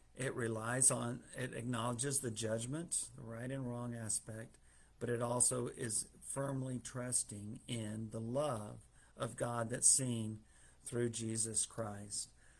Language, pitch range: English, 110-130 Hz